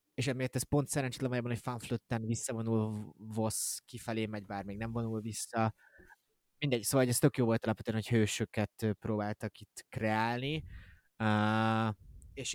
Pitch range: 100-120 Hz